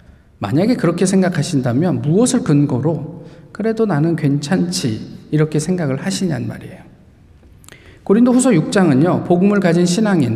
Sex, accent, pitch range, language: male, native, 140-195 Hz, Korean